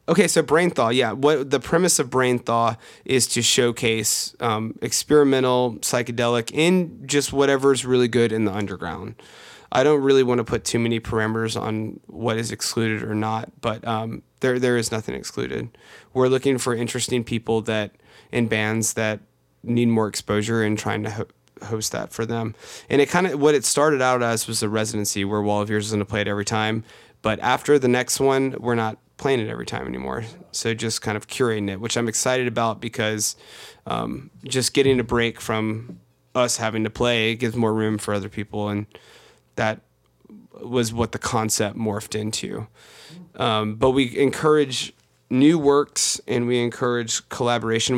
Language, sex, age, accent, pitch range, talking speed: English, male, 20-39, American, 110-125 Hz, 185 wpm